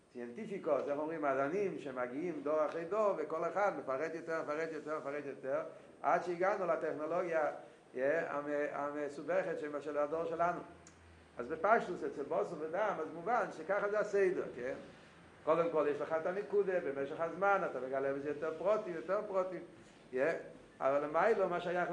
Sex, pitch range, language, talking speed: male, 145-195 Hz, Hebrew, 155 wpm